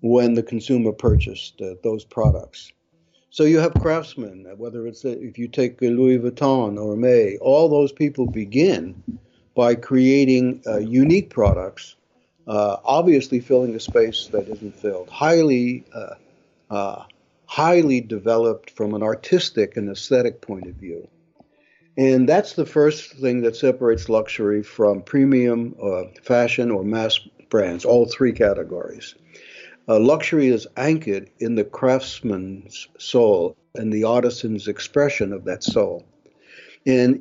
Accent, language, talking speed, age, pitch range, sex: American, English, 135 wpm, 60-79, 110-140 Hz, male